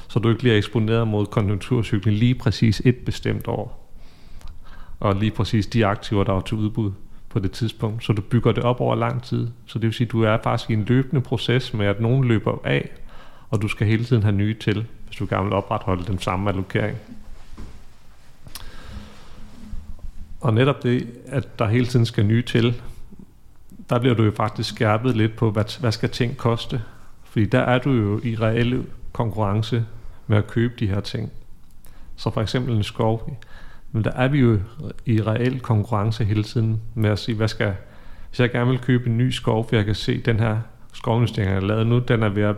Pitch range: 100-120 Hz